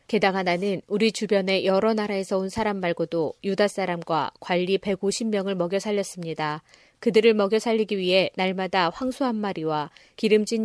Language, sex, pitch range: Korean, female, 175-215 Hz